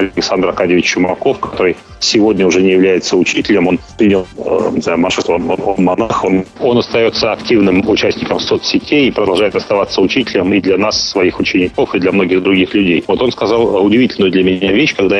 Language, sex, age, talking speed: Russian, male, 40-59, 160 wpm